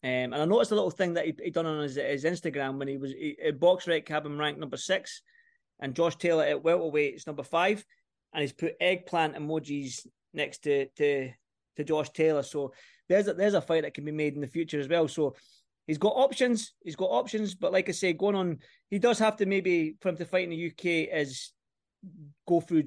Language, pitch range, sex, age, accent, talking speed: English, 145-180 Hz, male, 20-39, British, 225 wpm